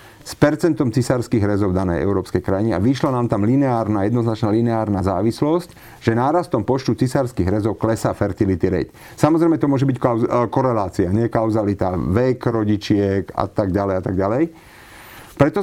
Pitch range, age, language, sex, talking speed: 105-145 Hz, 40-59, Slovak, male, 155 wpm